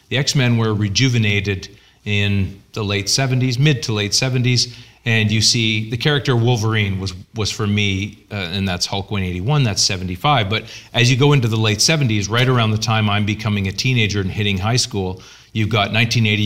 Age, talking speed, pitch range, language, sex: 40-59, 190 wpm, 105-120 Hz, English, male